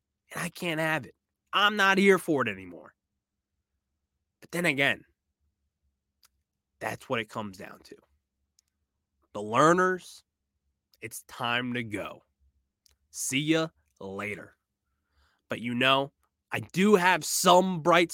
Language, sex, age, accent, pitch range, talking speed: English, male, 20-39, American, 105-160 Hz, 120 wpm